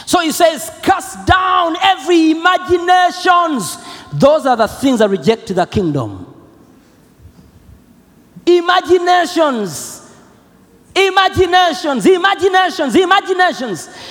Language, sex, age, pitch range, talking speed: Swedish, male, 40-59, 270-370 Hz, 80 wpm